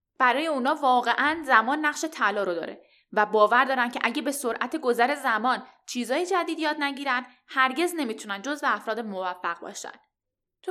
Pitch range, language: 220-305 Hz, Persian